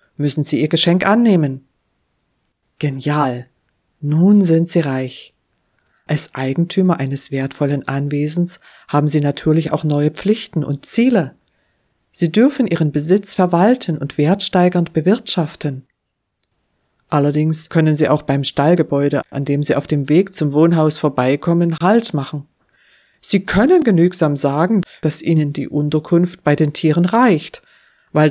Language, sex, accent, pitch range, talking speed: German, female, German, 145-190 Hz, 130 wpm